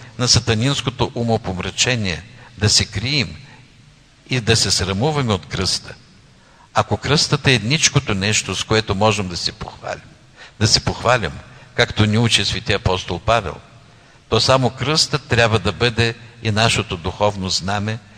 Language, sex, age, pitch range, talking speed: Bulgarian, male, 60-79, 100-125 Hz, 140 wpm